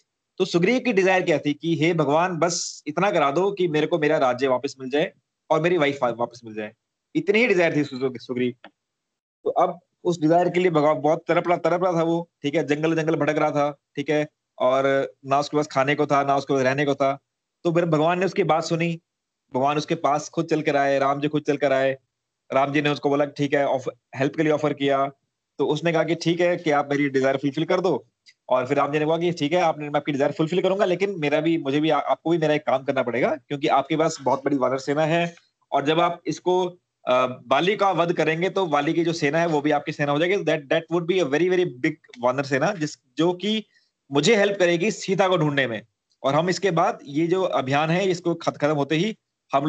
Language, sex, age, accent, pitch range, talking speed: Hindi, male, 30-49, native, 140-170 Hz, 235 wpm